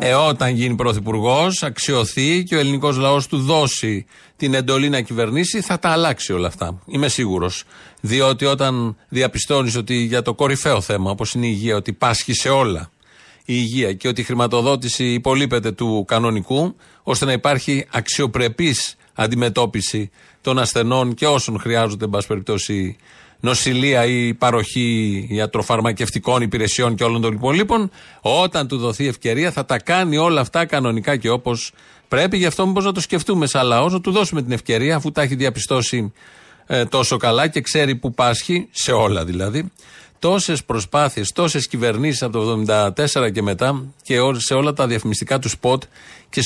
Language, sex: Greek, male